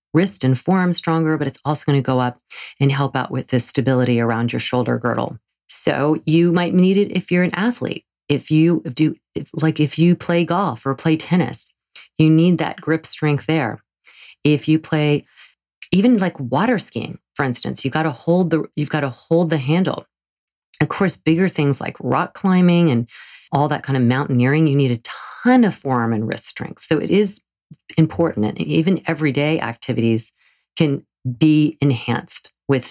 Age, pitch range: 40-59, 130-170 Hz